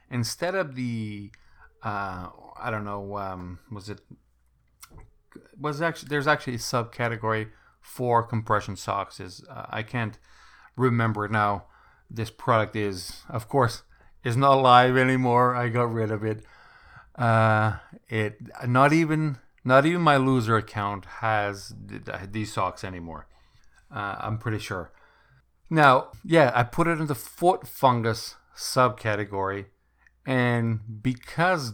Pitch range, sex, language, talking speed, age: 105-125 Hz, male, English, 130 wpm, 40-59